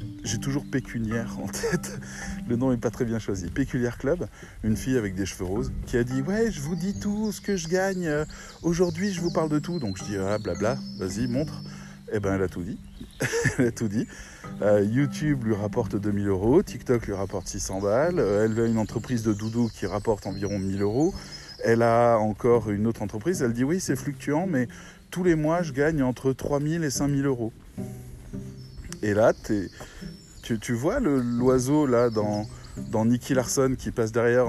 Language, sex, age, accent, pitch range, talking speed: French, male, 20-39, French, 105-140 Hz, 215 wpm